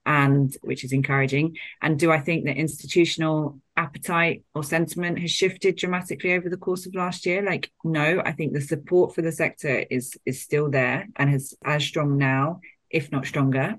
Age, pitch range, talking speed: 30-49, 125-150 Hz, 185 wpm